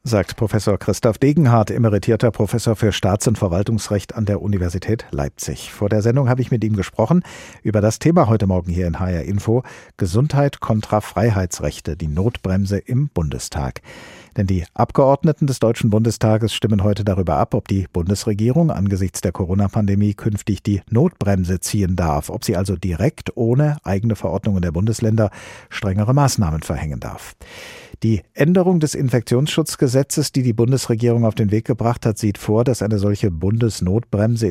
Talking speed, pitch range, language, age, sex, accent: 155 wpm, 95-125 Hz, German, 50-69, male, German